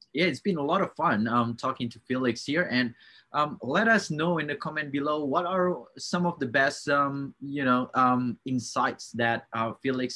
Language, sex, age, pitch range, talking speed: English, male, 20-39, 115-150 Hz, 200 wpm